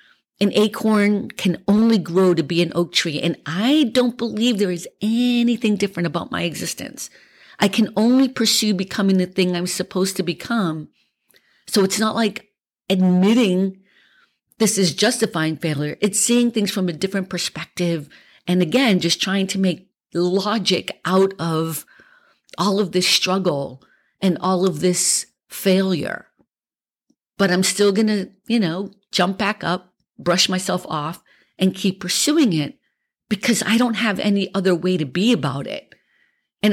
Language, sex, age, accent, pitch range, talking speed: English, female, 50-69, American, 170-210 Hz, 155 wpm